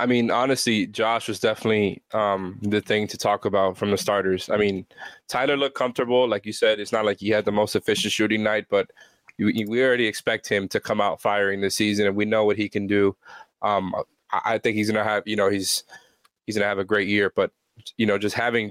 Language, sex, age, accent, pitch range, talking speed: English, male, 20-39, American, 105-120 Hz, 245 wpm